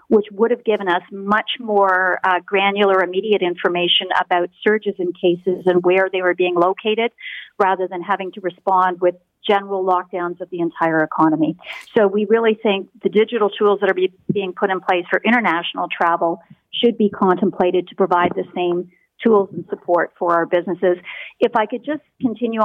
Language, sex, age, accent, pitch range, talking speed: English, female, 40-59, American, 180-215 Hz, 180 wpm